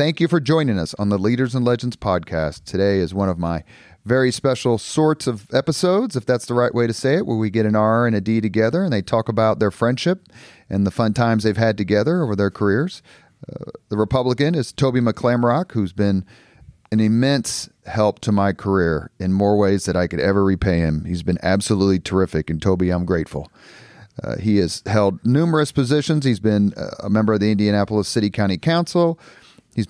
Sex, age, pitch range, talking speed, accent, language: male, 40-59, 100-130 Hz, 205 wpm, American, English